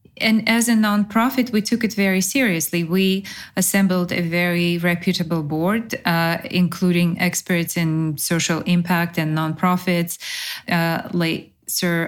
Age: 20-39